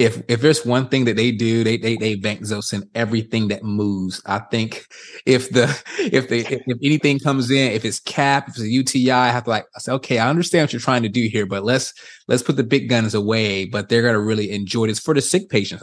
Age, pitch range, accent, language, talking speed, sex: 20-39, 110-135 Hz, American, English, 250 wpm, male